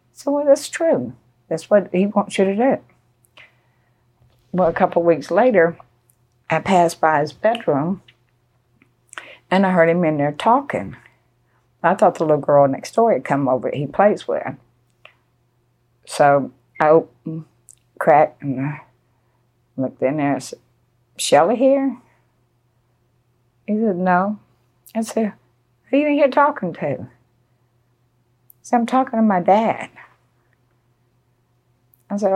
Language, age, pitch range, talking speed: English, 60-79, 120-175 Hz, 135 wpm